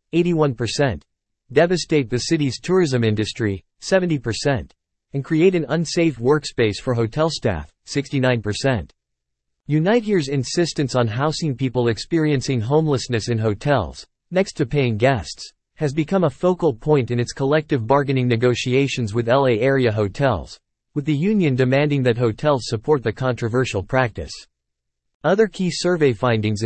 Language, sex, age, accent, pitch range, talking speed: English, male, 50-69, American, 115-150 Hz, 135 wpm